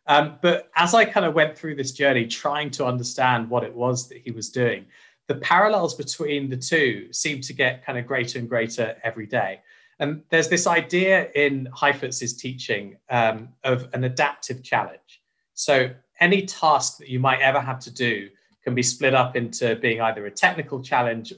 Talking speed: 190 wpm